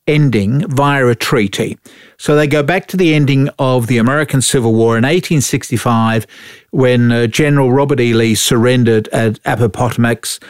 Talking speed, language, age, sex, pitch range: 155 wpm, English, 50-69, male, 120-155 Hz